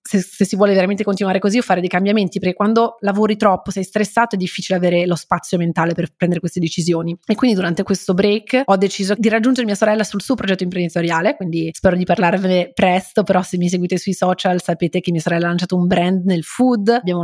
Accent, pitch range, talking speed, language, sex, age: native, 175-195 Hz, 225 wpm, Italian, female, 30-49